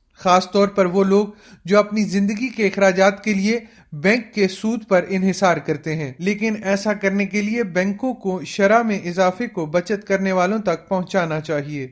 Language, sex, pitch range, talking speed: Urdu, male, 175-200 Hz, 180 wpm